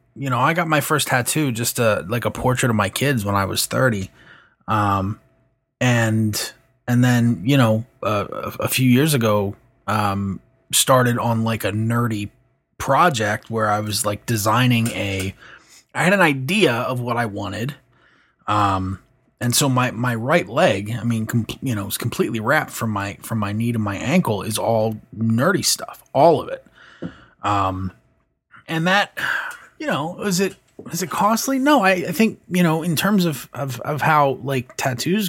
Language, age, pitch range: English, 20-39, 110-140 Hz